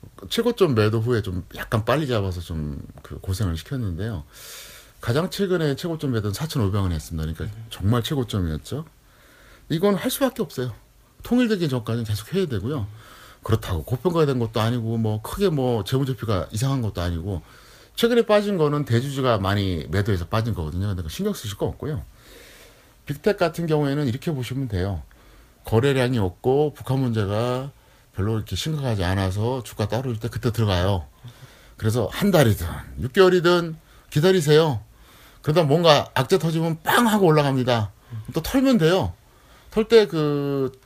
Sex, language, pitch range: male, Korean, 105-160 Hz